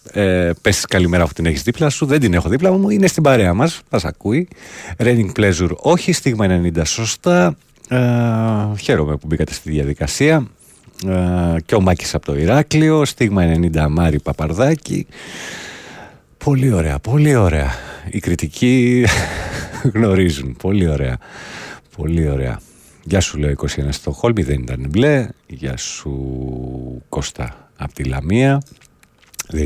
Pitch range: 75-125 Hz